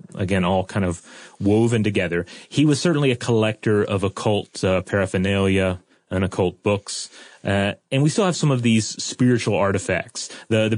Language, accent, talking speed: English, American, 165 wpm